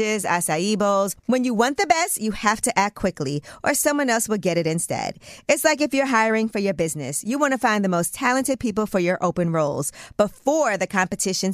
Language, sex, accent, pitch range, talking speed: English, female, American, 185-265 Hz, 220 wpm